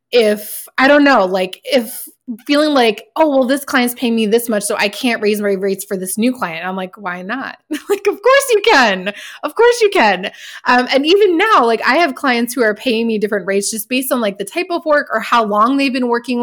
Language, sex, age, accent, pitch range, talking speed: English, female, 20-39, American, 200-255 Hz, 245 wpm